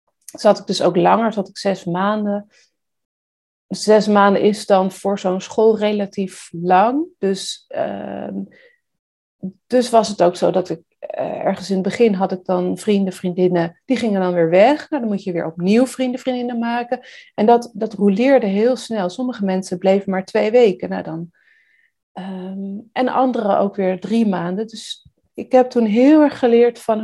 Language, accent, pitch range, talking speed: Dutch, Dutch, 190-235 Hz, 180 wpm